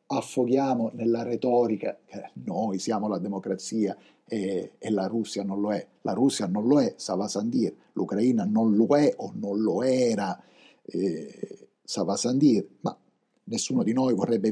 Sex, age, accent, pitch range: male, 50-69, native, 105-125 Hz